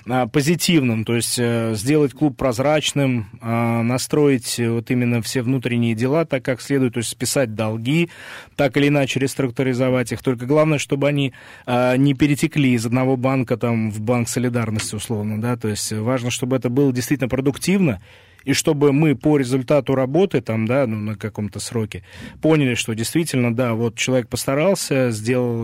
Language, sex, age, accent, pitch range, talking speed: Russian, male, 20-39, native, 115-140 Hz, 155 wpm